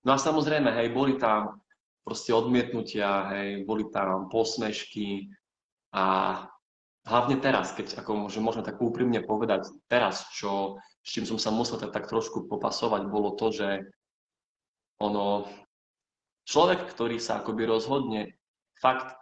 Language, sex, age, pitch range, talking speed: Czech, male, 20-39, 100-125 Hz, 125 wpm